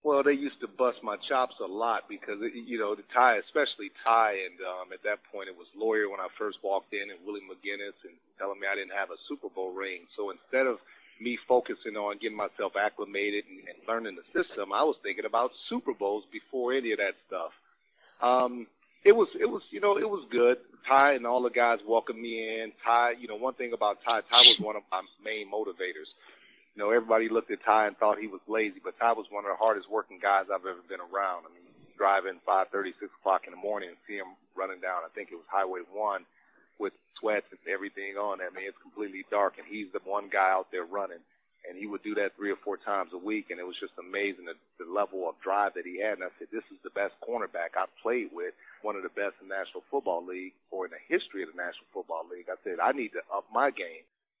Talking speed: 245 wpm